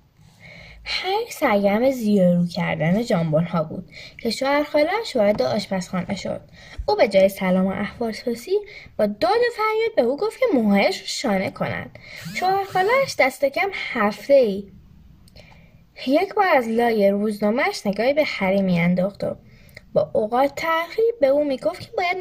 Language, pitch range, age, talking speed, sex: Persian, 195-325 Hz, 10-29, 140 wpm, female